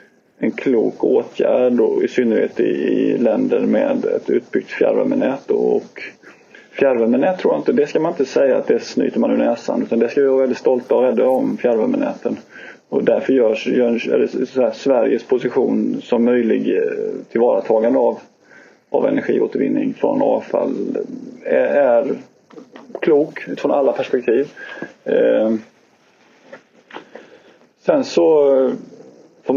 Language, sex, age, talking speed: Swedish, male, 20-39, 130 wpm